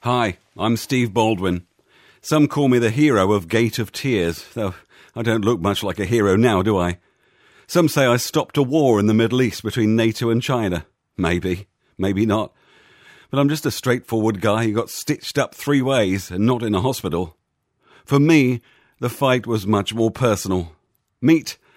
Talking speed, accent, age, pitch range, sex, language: 185 wpm, British, 50-69, 95-125 Hz, male, English